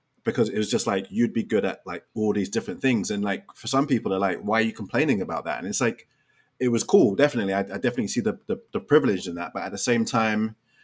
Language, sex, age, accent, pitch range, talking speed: English, male, 30-49, British, 95-120 Hz, 275 wpm